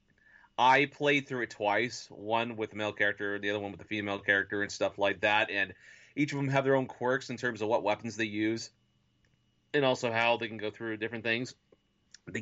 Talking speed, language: 220 wpm, English